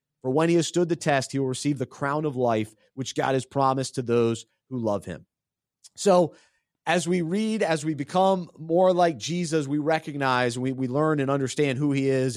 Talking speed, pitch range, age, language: 210 wpm, 135-170 Hz, 30-49, English